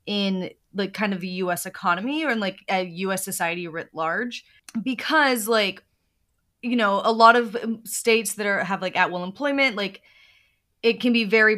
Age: 20-39